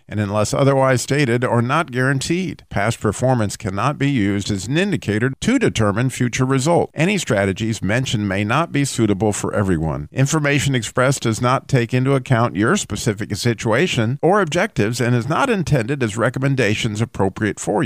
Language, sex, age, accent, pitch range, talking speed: English, male, 50-69, American, 115-155 Hz, 160 wpm